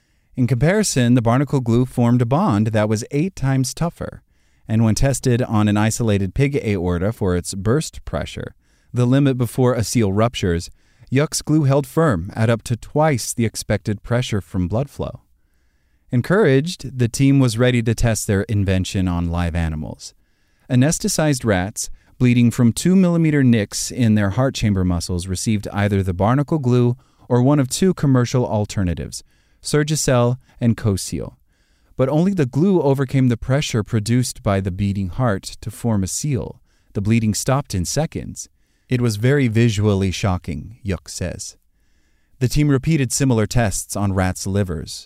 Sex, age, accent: male, 30-49, American